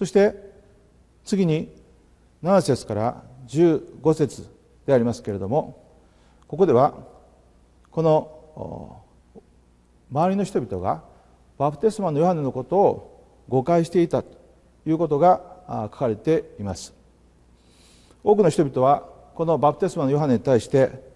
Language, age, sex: Japanese, 40-59, male